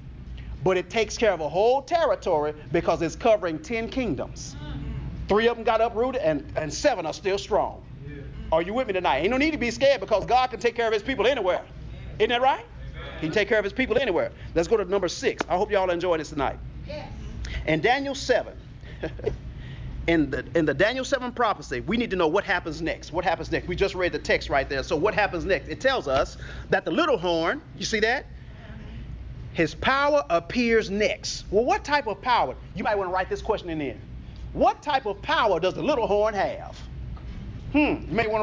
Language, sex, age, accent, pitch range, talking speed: English, male, 40-59, American, 170-260 Hz, 210 wpm